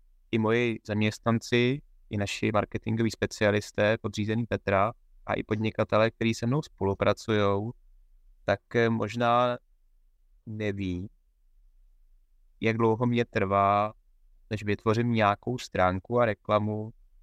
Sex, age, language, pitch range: male, 20-39, Czech, 100-115 Hz